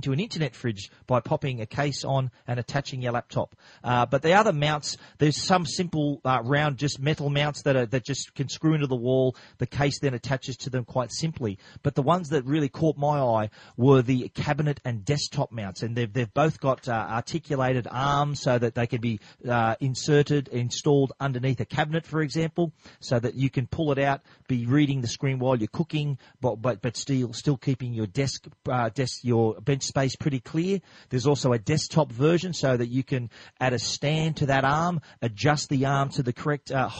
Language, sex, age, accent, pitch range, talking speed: English, male, 40-59, Australian, 125-145 Hz, 210 wpm